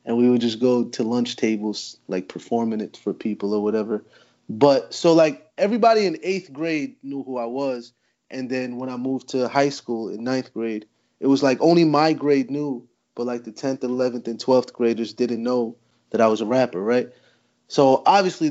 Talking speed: 200 wpm